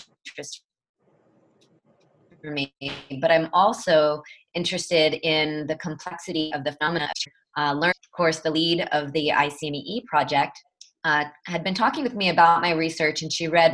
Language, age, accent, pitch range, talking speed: English, 20-39, American, 150-180 Hz, 155 wpm